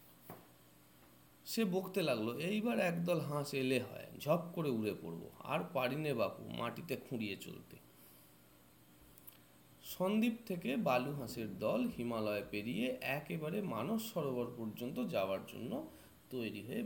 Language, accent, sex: Bengali, native, male